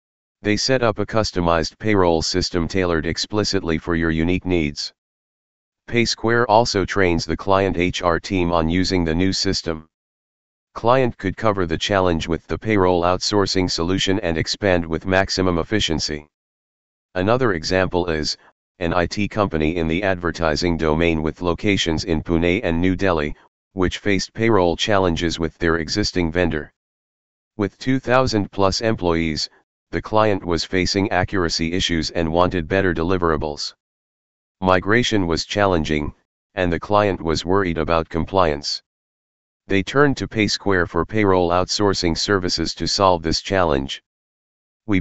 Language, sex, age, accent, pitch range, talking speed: English, male, 40-59, American, 80-100 Hz, 135 wpm